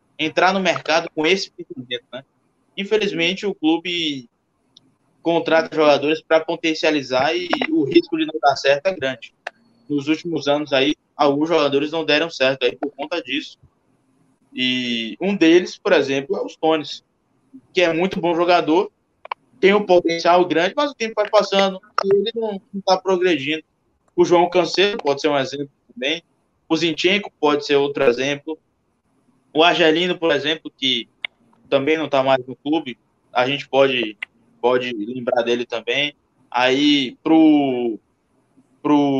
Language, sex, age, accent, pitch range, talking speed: Portuguese, male, 20-39, Brazilian, 135-180 Hz, 150 wpm